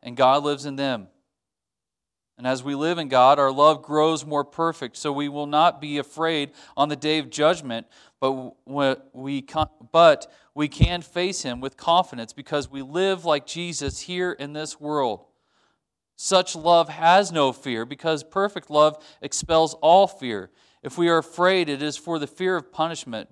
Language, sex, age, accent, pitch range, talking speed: English, male, 40-59, American, 125-155 Hz, 165 wpm